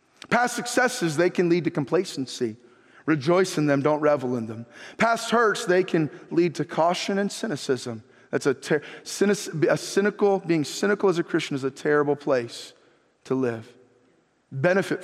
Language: English